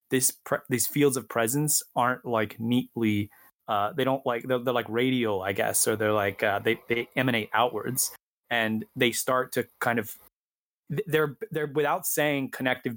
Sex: male